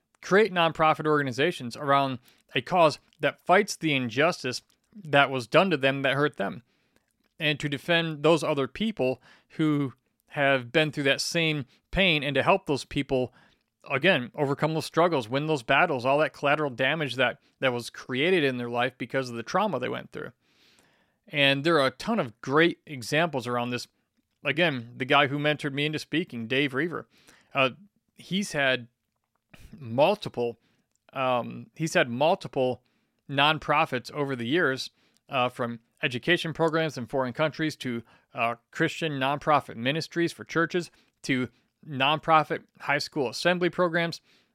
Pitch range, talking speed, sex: 130-160 Hz, 150 wpm, male